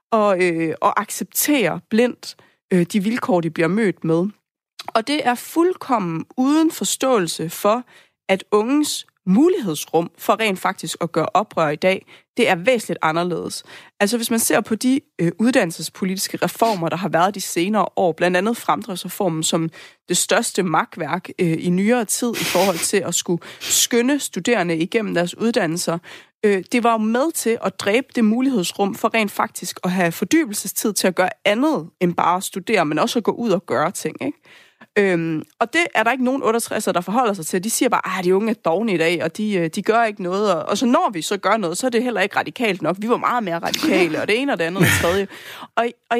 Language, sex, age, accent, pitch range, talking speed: Danish, female, 30-49, native, 180-240 Hz, 210 wpm